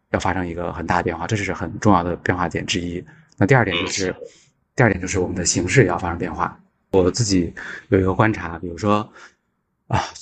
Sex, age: male, 20-39